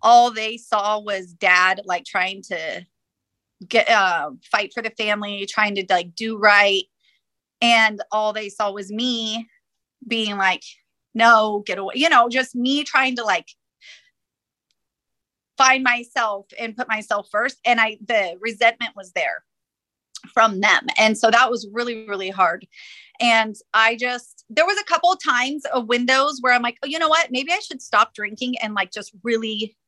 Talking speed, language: 170 wpm, English